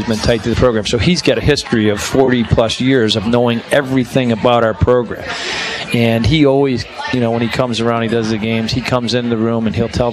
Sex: male